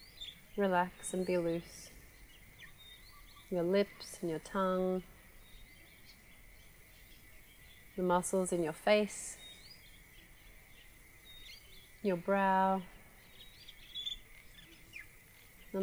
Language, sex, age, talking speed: English, female, 30-49, 65 wpm